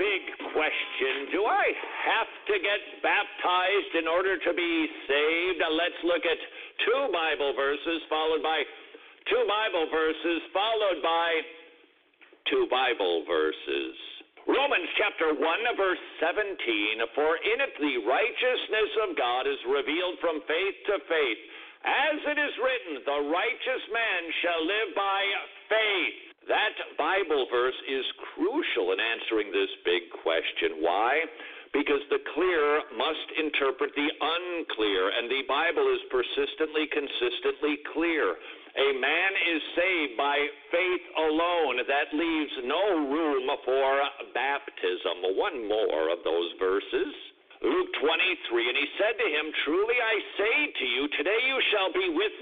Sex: male